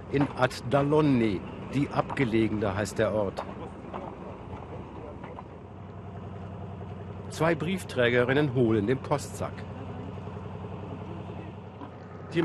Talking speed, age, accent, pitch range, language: 65 wpm, 60-79, German, 105-145 Hz, German